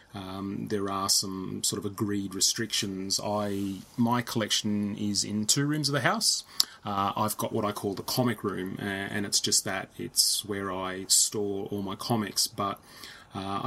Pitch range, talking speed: 95-110 Hz, 175 wpm